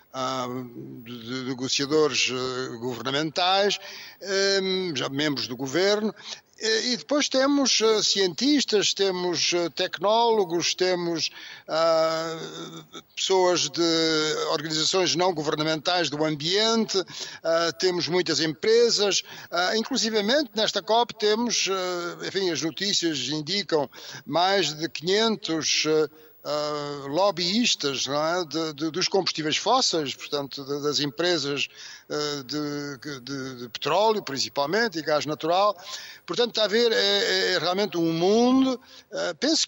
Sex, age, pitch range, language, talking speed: male, 60-79, 155-210 Hz, Portuguese, 105 wpm